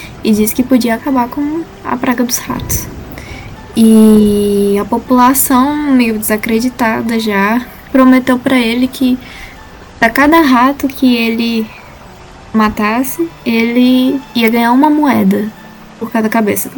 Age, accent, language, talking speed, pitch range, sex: 10-29, Brazilian, Portuguese, 120 wpm, 210-255 Hz, female